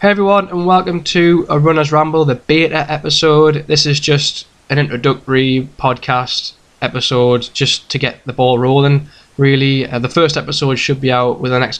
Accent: British